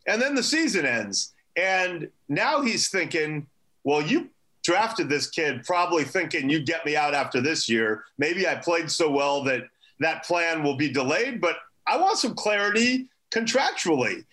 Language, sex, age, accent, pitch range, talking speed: English, male, 40-59, American, 130-175 Hz, 170 wpm